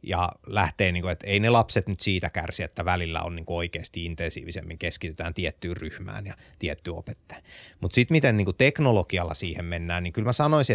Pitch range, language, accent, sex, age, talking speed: 90-115 Hz, Finnish, native, male, 30-49, 165 wpm